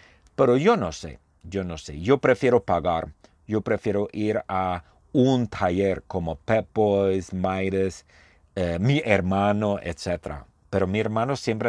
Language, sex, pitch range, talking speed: Spanish, male, 85-110 Hz, 145 wpm